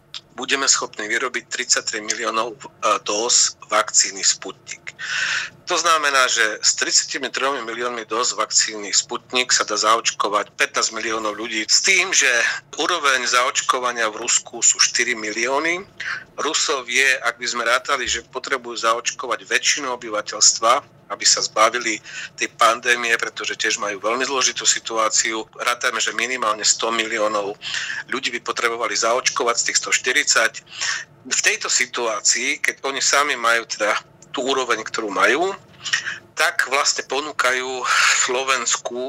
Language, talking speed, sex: Slovak, 125 wpm, male